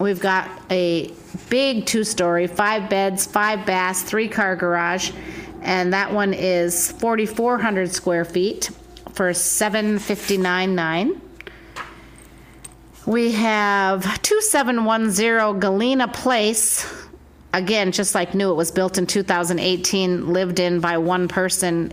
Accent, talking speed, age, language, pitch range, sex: American, 110 wpm, 40-59, English, 180-220 Hz, female